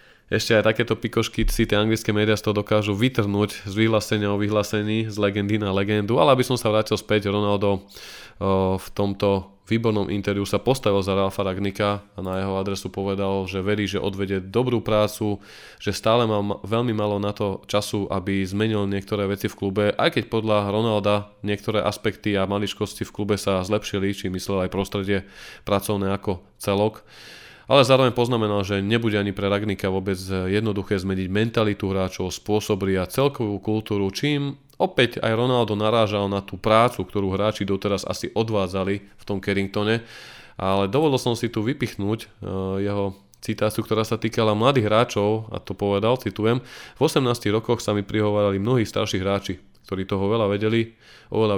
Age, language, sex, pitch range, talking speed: 20-39, Slovak, male, 100-110 Hz, 170 wpm